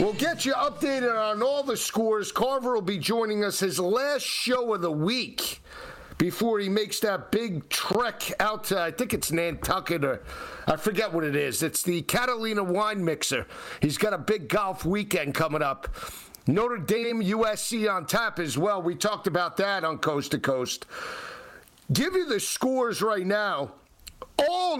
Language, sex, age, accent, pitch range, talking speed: English, male, 50-69, American, 180-225 Hz, 175 wpm